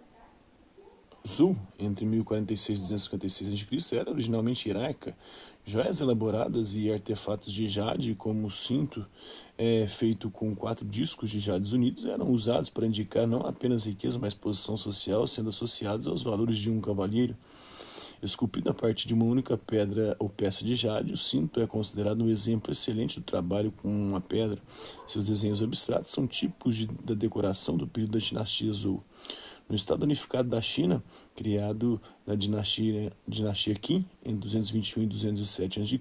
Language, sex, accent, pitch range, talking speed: Portuguese, male, Brazilian, 105-115 Hz, 155 wpm